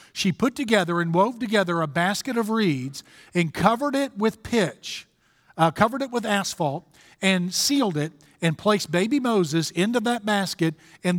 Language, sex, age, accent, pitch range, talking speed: English, male, 50-69, American, 165-220 Hz, 165 wpm